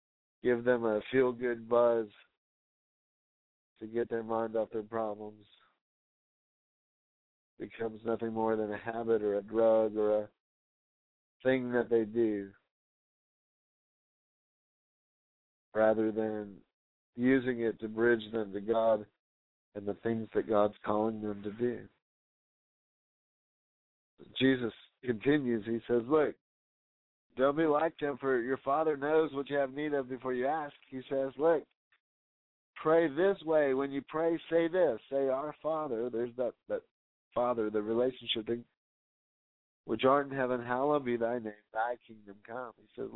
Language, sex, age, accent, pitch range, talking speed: English, male, 50-69, American, 110-130 Hz, 140 wpm